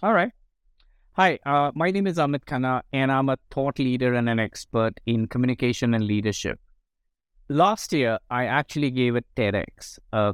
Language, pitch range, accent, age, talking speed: English, 110-150 Hz, Indian, 50-69, 170 wpm